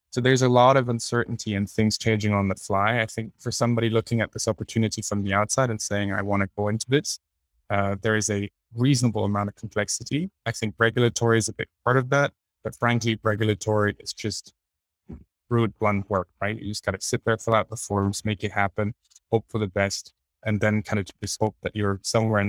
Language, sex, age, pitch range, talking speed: English, male, 20-39, 100-115 Hz, 225 wpm